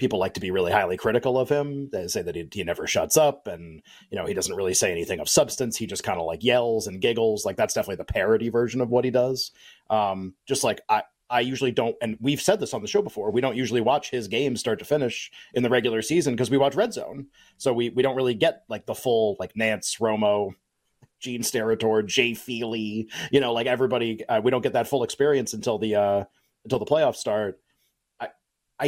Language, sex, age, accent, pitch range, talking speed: English, male, 30-49, American, 110-140 Hz, 235 wpm